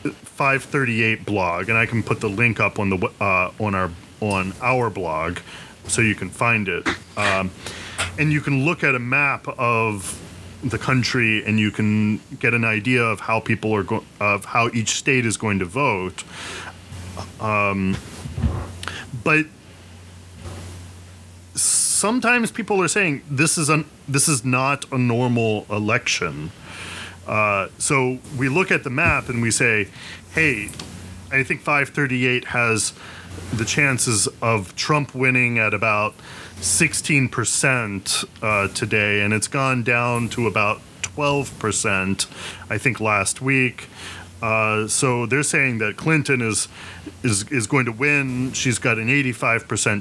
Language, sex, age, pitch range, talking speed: English, male, 30-49, 100-130 Hz, 140 wpm